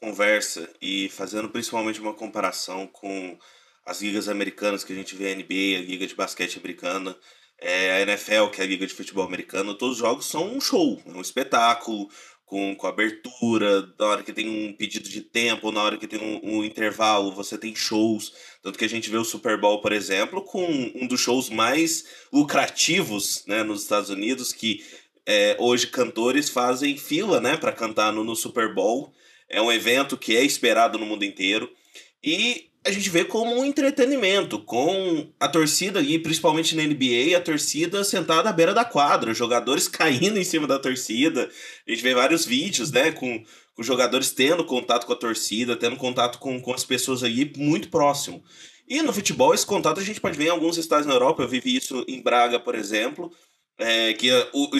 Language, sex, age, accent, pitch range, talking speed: Portuguese, male, 20-39, Brazilian, 105-160 Hz, 195 wpm